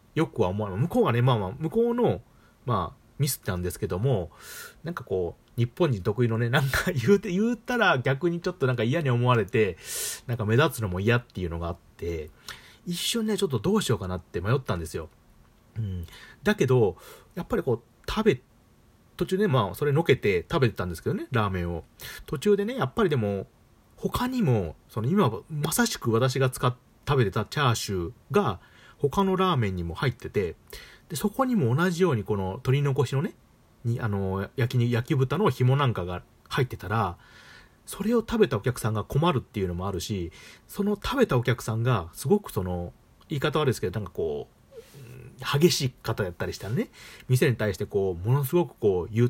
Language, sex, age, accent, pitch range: Japanese, male, 40-59, native, 105-145 Hz